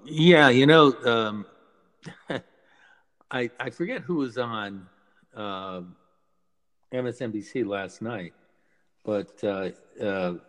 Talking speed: 95 wpm